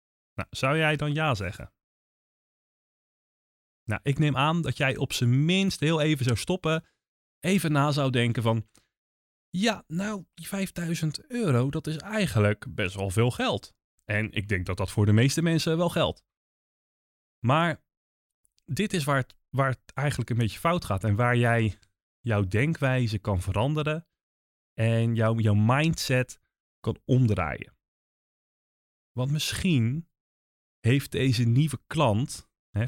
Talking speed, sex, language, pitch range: 145 wpm, male, Dutch, 100-135 Hz